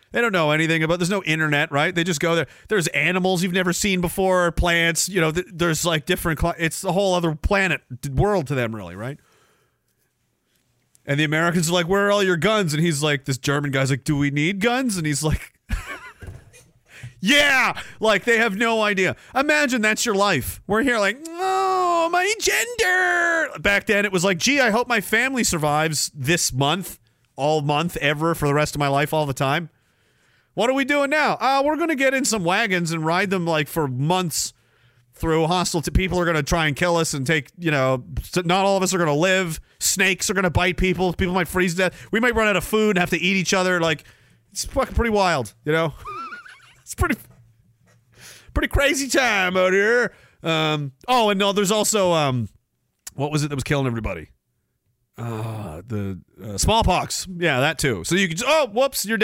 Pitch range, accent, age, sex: 145-205 Hz, American, 30-49, male